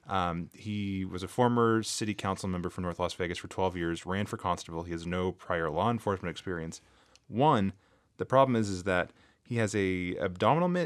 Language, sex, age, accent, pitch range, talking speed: English, male, 20-39, American, 90-110 Hz, 195 wpm